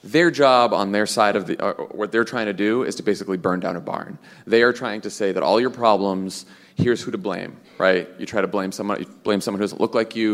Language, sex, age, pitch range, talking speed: English, male, 30-49, 95-115 Hz, 260 wpm